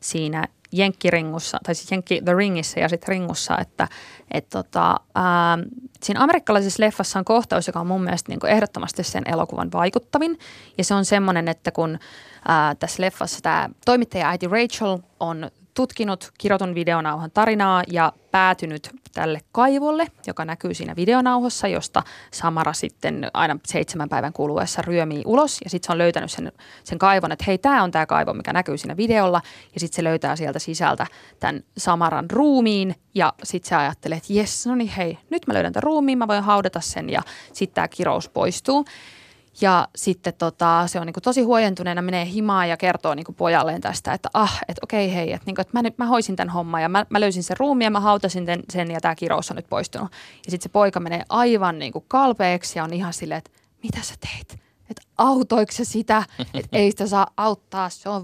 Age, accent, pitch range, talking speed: 20-39, native, 170-215 Hz, 190 wpm